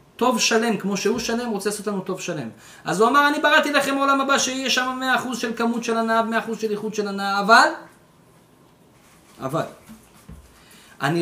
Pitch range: 150-230 Hz